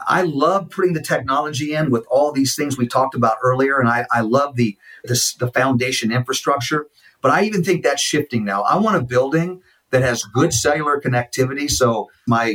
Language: English